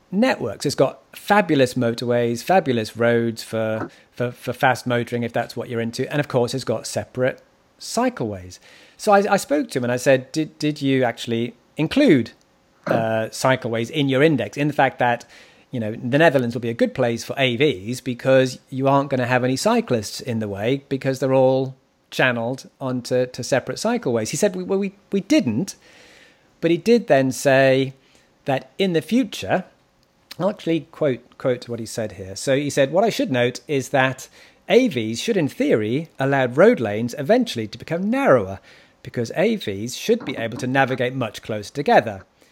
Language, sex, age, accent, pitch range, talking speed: English, male, 40-59, British, 120-160 Hz, 185 wpm